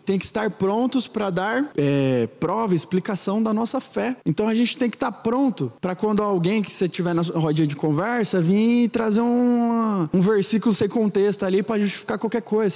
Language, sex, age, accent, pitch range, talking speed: Portuguese, male, 20-39, Brazilian, 160-215 Hz, 195 wpm